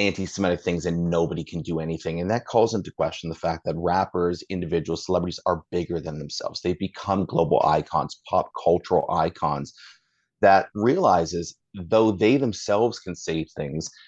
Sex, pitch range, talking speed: male, 80-105 Hz, 160 wpm